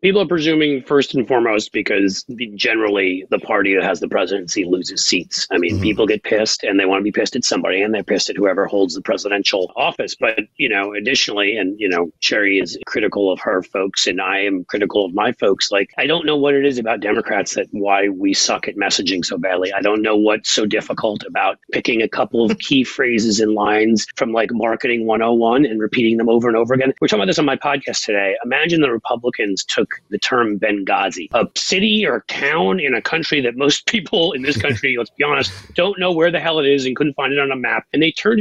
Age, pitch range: 40-59, 115-165 Hz